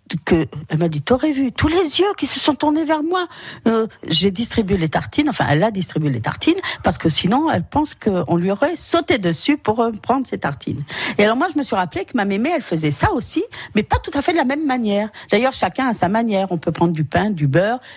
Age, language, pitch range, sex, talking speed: 50-69, French, 155-235 Hz, female, 255 wpm